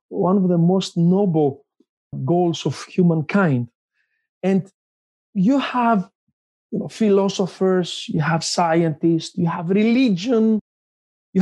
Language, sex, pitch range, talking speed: English, male, 165-220 Hz, 110 wpm